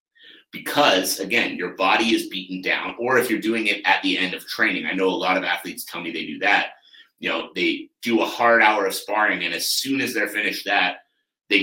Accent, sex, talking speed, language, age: American, male, 230 wpm, English, 30-49